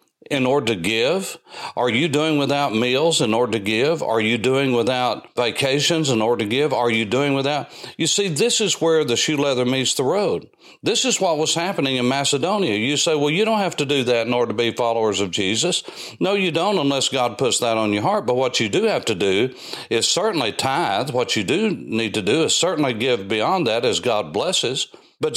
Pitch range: 130-180 Hz